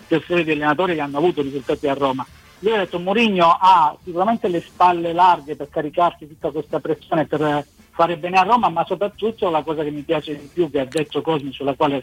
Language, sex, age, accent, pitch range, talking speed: Italian, male, 50-69, native, 150-180 Hz, 215 wpm